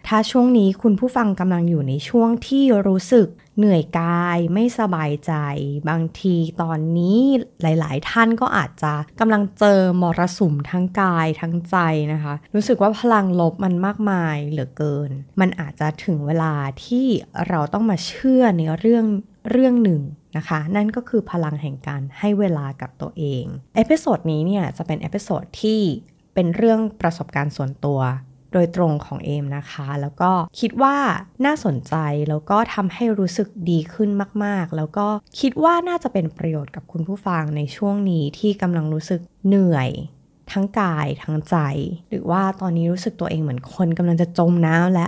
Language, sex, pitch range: Thai, female, 150-200 Hz